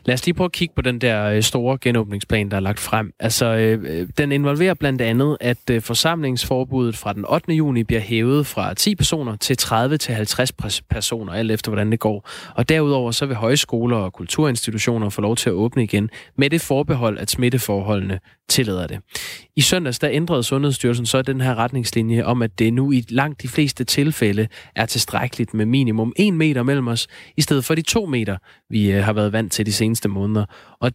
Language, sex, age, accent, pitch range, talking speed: Danish, male, 20-39, native, 105-135 Hz, 200 wpm